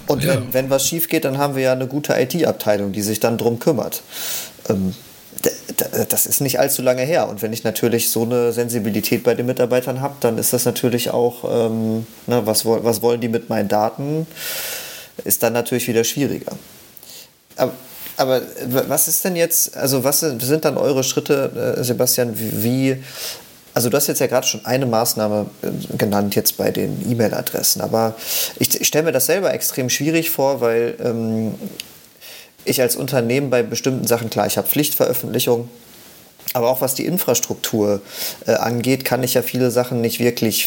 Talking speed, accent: 170 wpm, German